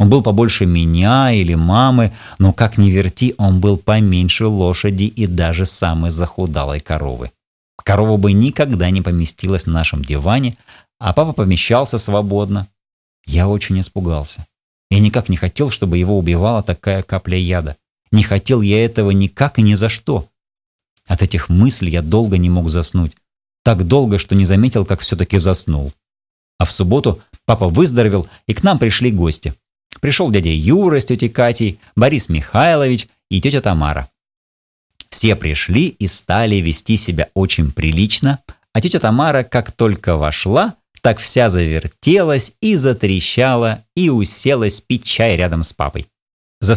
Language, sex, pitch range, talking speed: Russian, male, 90-115 Hz, 150 wpm